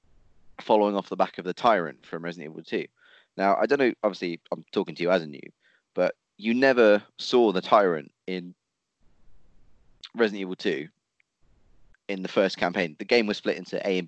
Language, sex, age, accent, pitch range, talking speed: English, male, 20-39, British, 90-115 Hz, 190 wpm